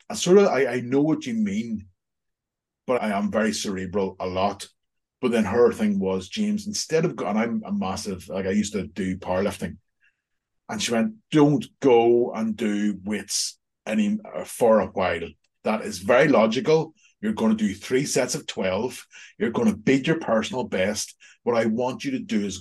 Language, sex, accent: English, male, Irish